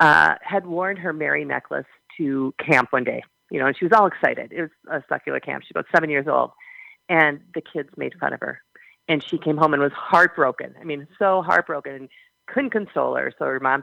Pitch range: 140-185 Hz